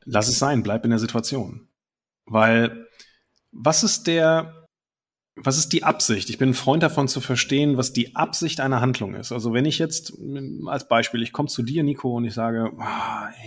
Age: 30-49